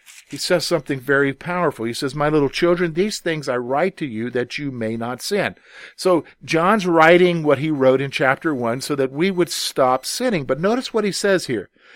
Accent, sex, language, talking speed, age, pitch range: American, male, English, 210 wpm, 50-69, 140-200 Hz